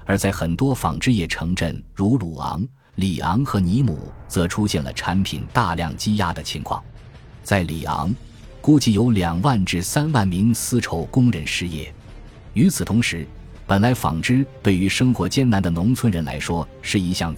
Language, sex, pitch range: Chinese, male, 85-115 Hz